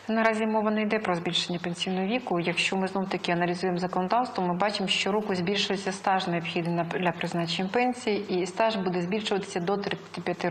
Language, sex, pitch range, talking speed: Ukrainian, female, 180-205 Hz, 170 wpm